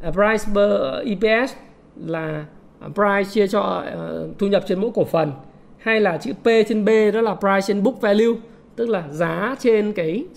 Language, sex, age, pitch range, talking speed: Vietnamese, male, 20-39, 205-250 Hz, 175 wpm